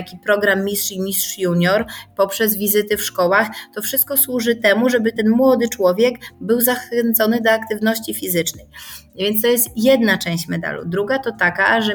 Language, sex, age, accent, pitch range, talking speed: Polish, female, 30-49, native, 190-225 Hz, 165 wpm